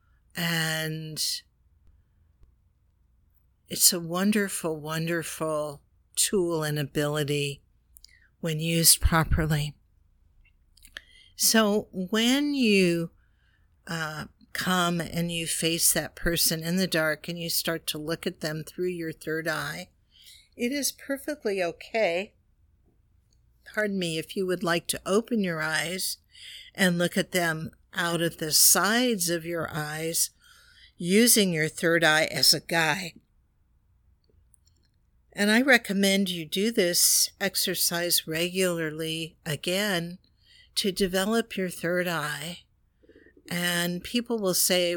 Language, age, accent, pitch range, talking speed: English, 50-69, American, 150-185 Hz, 115 wpm